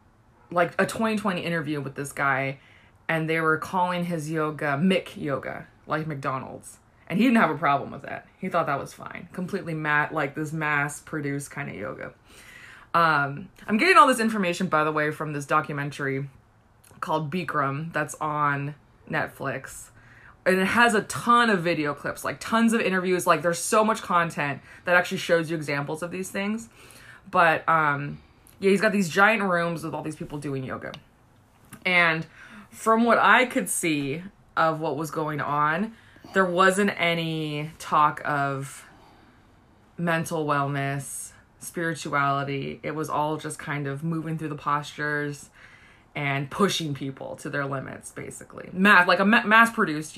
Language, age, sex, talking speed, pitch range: English, 20-39, female, 160 wpm, 140-180 Hz